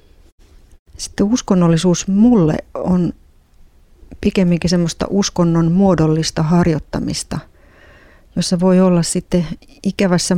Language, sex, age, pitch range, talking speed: Finnish, female, 30-49, 150-175 Hz, 80 wpm